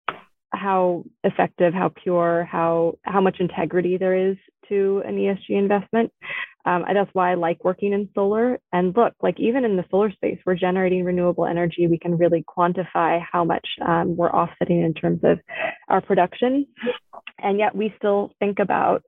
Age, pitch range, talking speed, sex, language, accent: 20-39, 175-200 Hz, 175 wpm, female, English, American